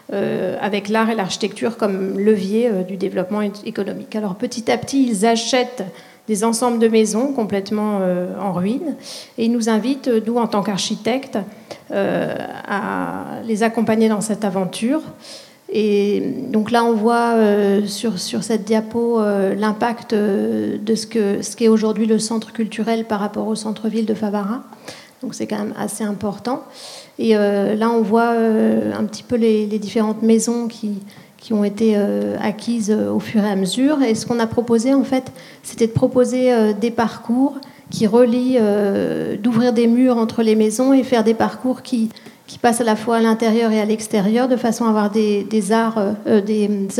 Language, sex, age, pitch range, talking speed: French, female, 40-59, 210-235 Hz, 185 wpm